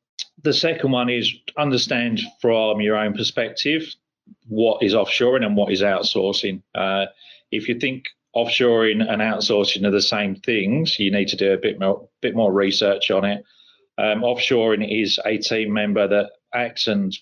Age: 30-49